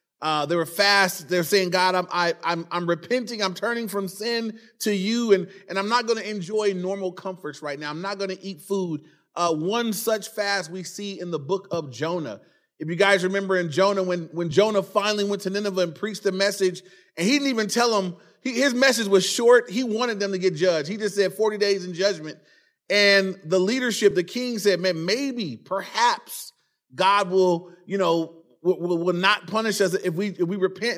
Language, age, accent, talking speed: English, 30-49, American, 210 wpm